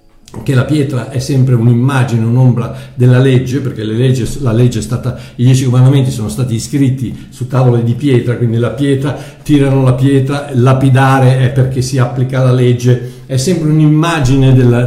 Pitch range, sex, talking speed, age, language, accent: 115-140 Hz, male, 155 wpm, 60-79, Italian, native